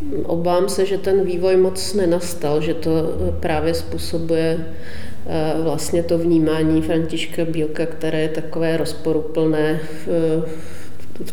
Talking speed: 110 wpm